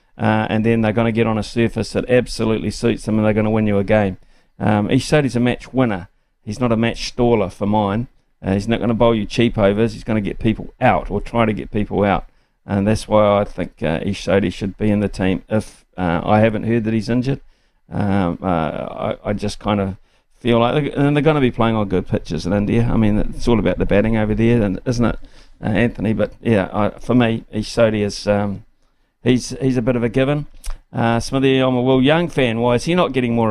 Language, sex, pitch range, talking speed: English, male, 105-120 Hz, 245 wpm